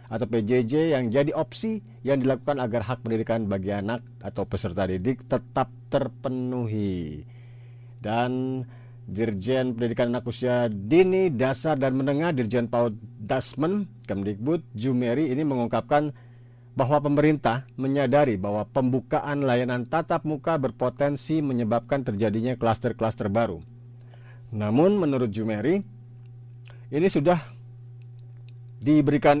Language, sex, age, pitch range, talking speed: Indonesian, male, 50-69, 120-140 Hz, 105 wpm